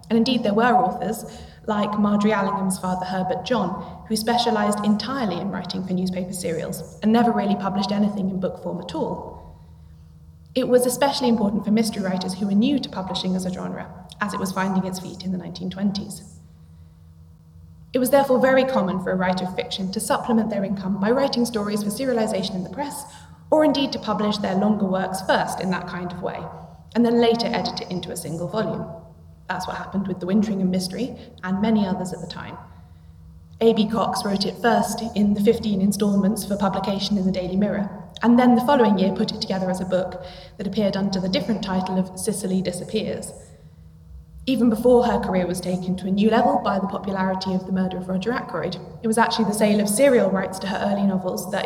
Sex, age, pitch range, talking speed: female, 20-39, 180-220 Hz, 205 wpm